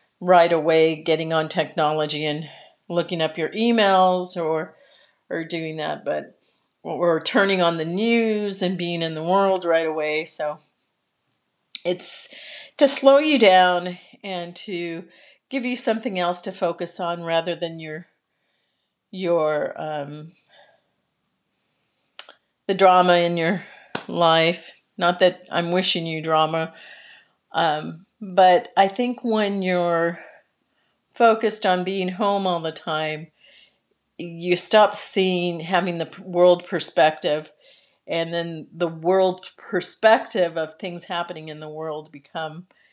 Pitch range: 165-190 Hz